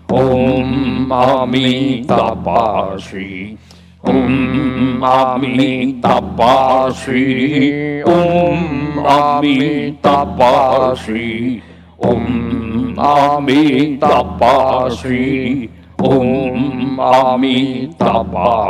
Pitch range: 125-140 Hz